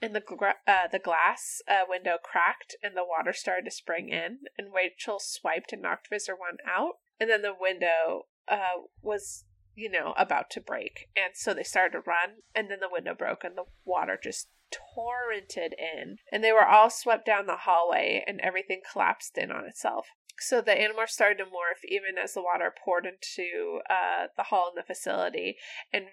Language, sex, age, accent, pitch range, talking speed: English, female, 20-39, American, 185-245 Hz, 195 wpm